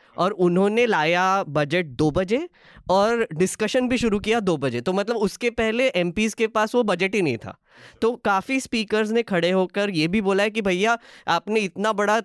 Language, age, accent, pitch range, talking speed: Hindi, 20-39, native, 145-200 Hz, 195 wpm